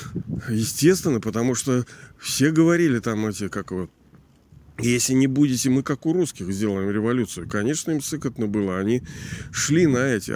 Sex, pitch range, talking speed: male, 110-140 Hz, 150 wpm